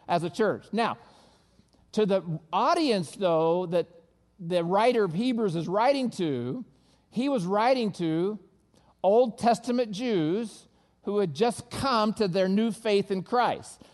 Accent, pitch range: American, 180-235 Hz